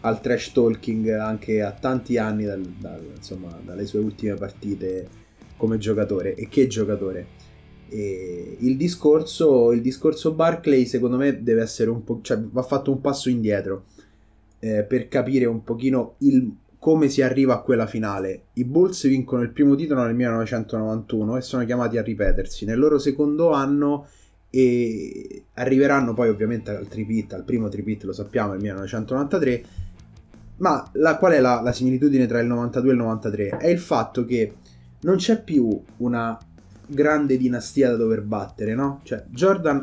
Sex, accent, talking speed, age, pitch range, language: male, native, 165 wpm, 20-39, 105-130 Hz, Italian